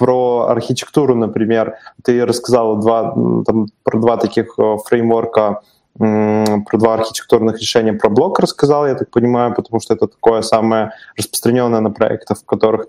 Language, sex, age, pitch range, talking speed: Russian, male, 20-39, 110-120 Hz, 145 wpm